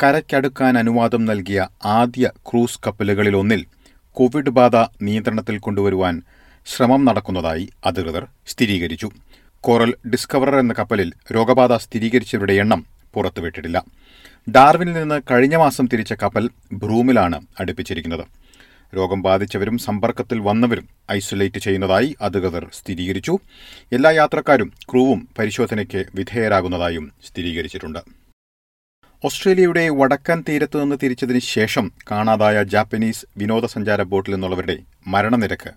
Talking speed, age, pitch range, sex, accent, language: 90 wpm, 40-59, 95-125 Hz, male, native, Malayalam